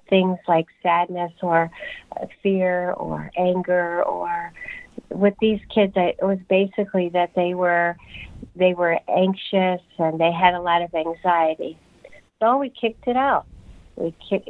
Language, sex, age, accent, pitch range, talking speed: English, female, 50-69, American, 175-220 Hz, 140 wpm